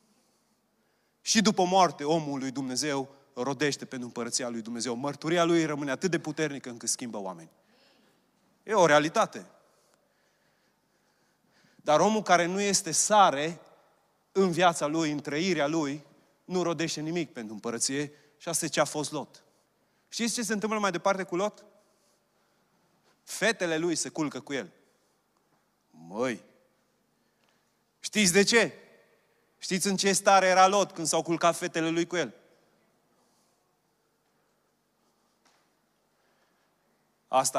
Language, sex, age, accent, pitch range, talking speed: Romanian, male, 30-49, native, 120-175 Hz, 125 wpm